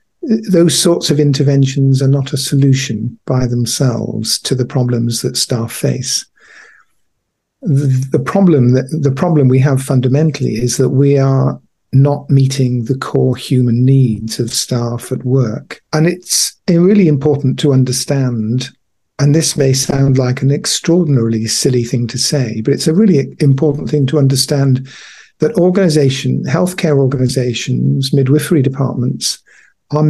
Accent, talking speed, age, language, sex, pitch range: British, 145 wpm, 50-69, English, male, 130-150 Hz